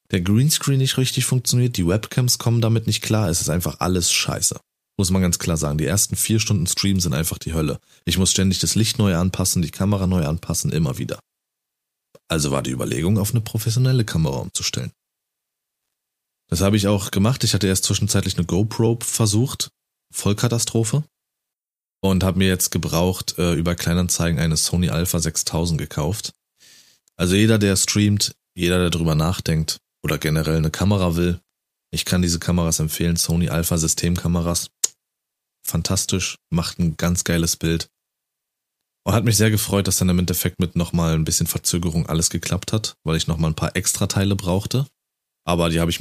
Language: German